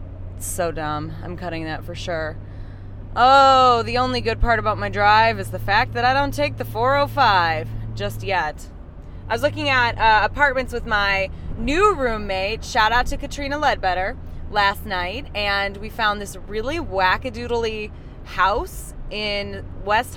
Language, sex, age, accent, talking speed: English, female, 20-39, American, 155 wpm